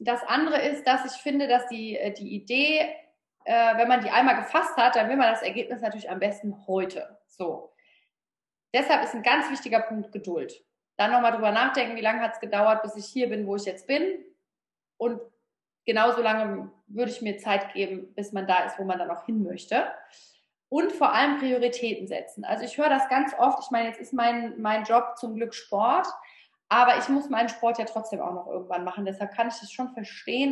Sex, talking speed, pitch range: female, 205 wpm, 220-270 Hz